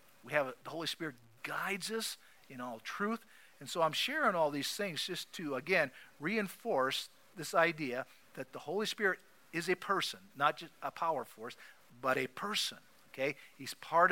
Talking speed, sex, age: 175 wpm, male, 50-69